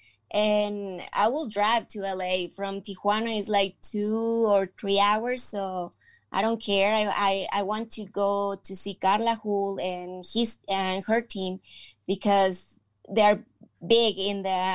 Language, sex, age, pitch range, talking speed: English, female, 20-39, 195-230 Hz, 160 wpm